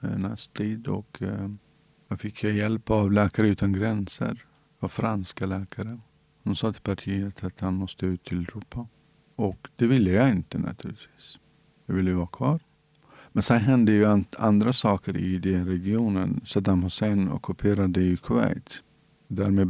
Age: 50-69